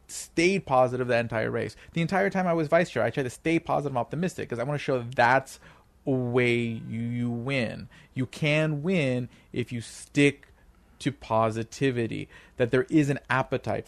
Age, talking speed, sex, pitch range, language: 30-49, 190 wpm, male, 120-155 Hz, English